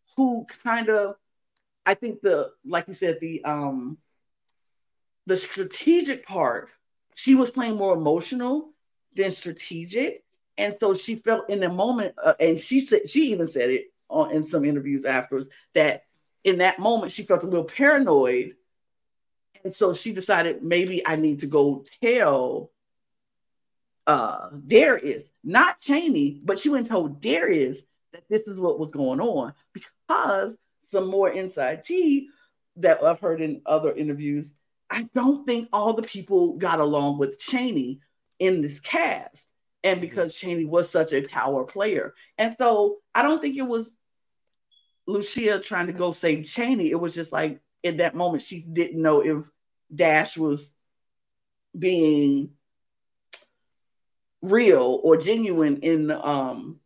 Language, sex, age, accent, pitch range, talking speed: English, female, 50-69, American, 155-240 Hz, 150 wpm